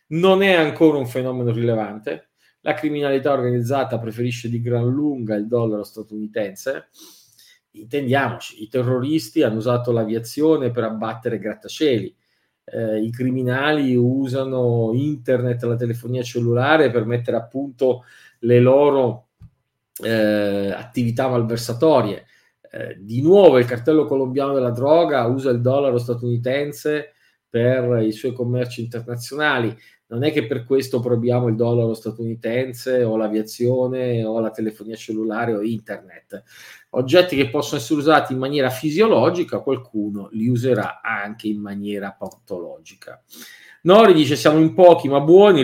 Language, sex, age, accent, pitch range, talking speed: Italian, male, 40-59, native, 115-140 Hz, 130 wpm